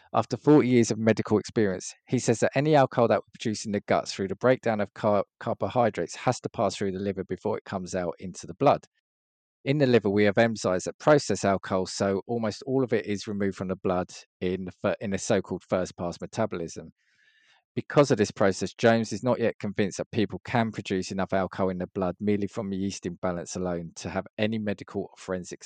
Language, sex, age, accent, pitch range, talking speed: English, male, 20-39, British, 95-115 Hz, 210 wpm